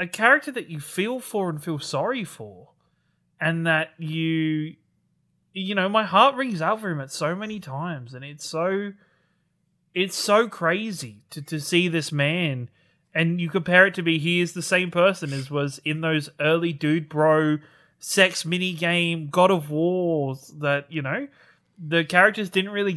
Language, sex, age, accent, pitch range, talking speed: English, male, 20-39, Australian, 150-185 Hz, 175 wpm